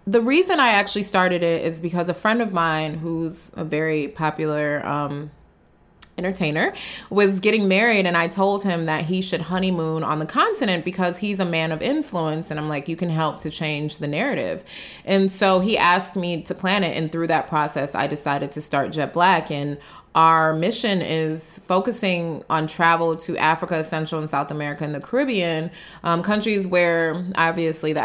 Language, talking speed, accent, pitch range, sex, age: English, 185 wpm, American, 155-195 Hz, female, 20-39